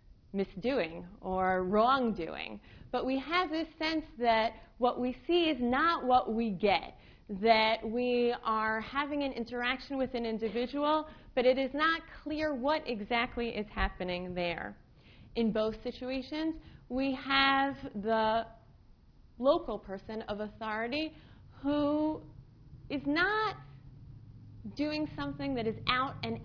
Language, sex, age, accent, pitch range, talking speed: English, female, 30-49, American, 185-245 Hz, 125 wpm